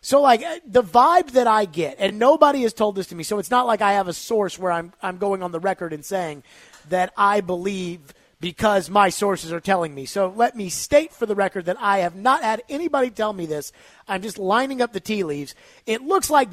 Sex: male